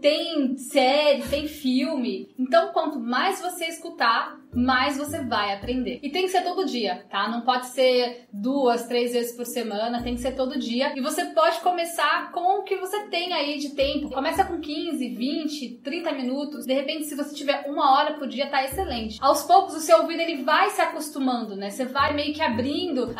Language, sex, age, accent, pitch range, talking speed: Portuguese, female, 10-29, Brazilian, 265-330 Hz, 200 wpm